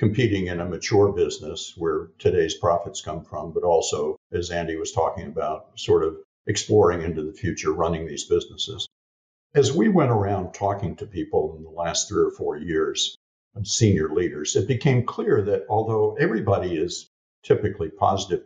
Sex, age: male, 50-69